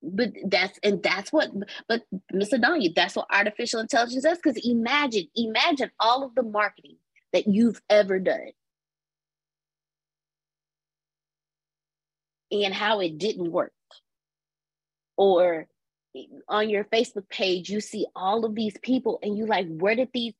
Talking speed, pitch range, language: 135 wpm, 155-260 Hz, English